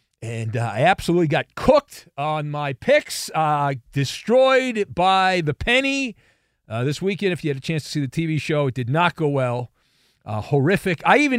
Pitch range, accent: 150-205 Hz, American